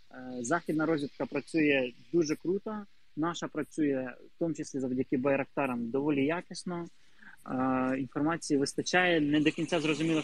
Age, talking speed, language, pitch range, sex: 20-39, 115 wpm, Ukrainian, 135-175 Hz, male